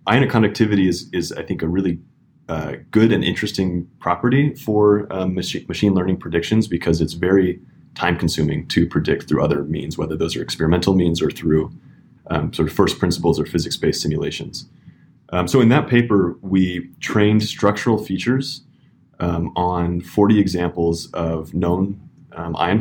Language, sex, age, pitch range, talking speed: English, male, 20-39, 85-105 Hz, 160 wpm